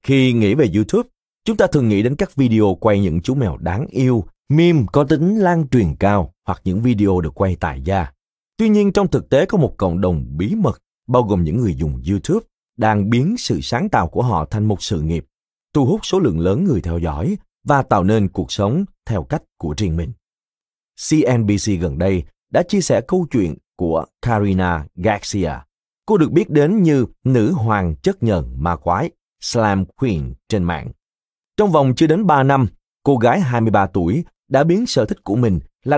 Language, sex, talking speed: Vietnamese, male, 200 wpm